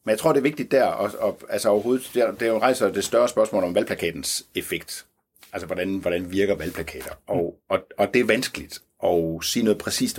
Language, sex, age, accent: Danish, male, 60-79, native